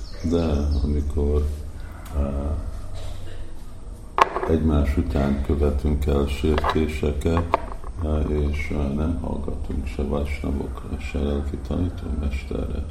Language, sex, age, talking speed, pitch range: Hungarian, male, 50-69, 80 wpm, 70-80 Hz